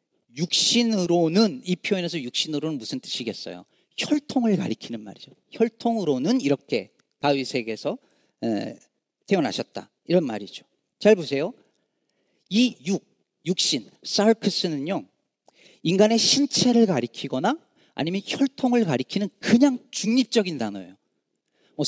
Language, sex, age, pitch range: Korean, male, 40-59, 150-220 Hz